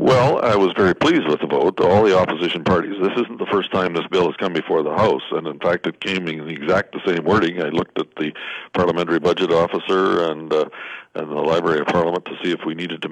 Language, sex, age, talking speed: English, male, 60-79, 250 wpm